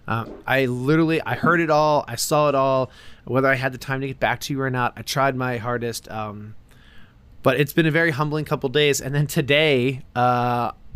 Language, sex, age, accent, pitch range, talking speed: English, male, 20-39, American, 110-140 Hz, 220 wpm